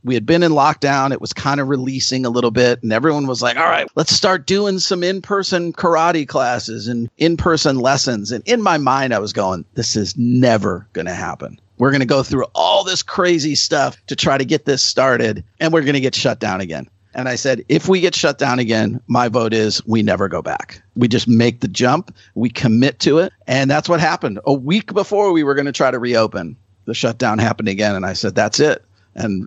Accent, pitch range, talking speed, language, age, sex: American, 115-150 Hz, 230 wpm, English, 40-59, male